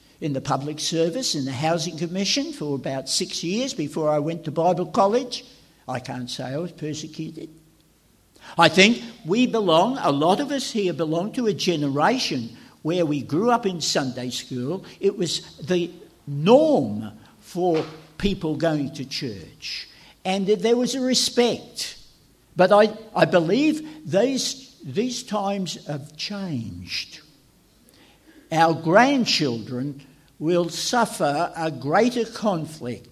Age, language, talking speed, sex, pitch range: 60-79, English, 135 wpm, male, 145-215 Hz